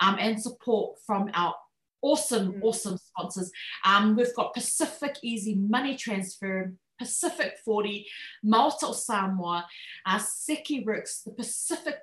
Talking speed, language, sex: 120 wpm, English, female